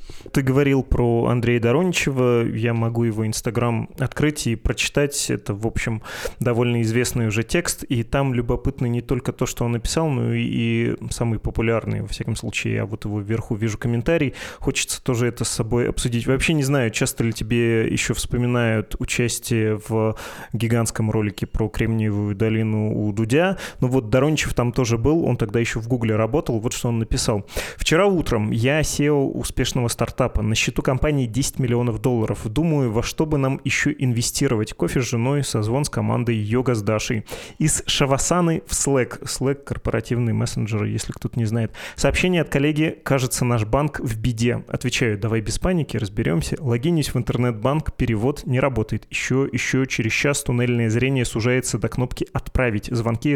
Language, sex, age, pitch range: Russian, male, 20-39, 115-135 Hz